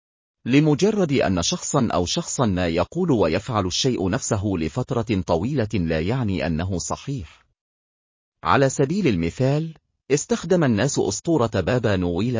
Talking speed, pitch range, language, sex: 115 wpm, 90-140 Hz, Arabic, male